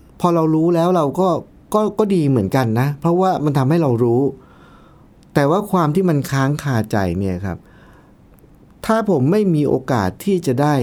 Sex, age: male, 60-79